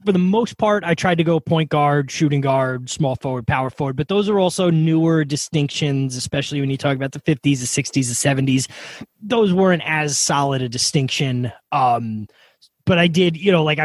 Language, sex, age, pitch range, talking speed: English, male, 20-39, 130-170 Hz, 200 wpm